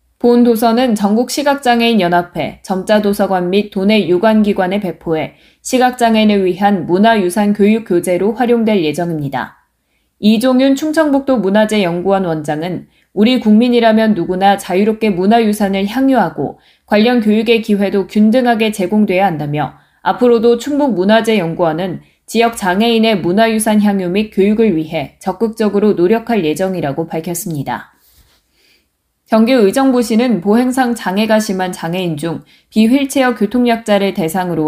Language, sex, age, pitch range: Korean, female, 20-39, 180-230 Hz